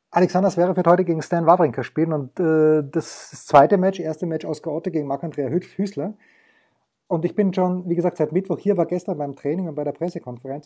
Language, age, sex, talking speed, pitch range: German, 30-49, male, 210 wpm, 155-190 Hz